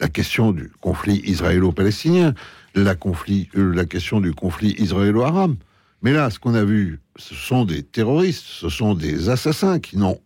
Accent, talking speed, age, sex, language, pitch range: French, 175 wpm, 60-79, male, French, 100-135 Hz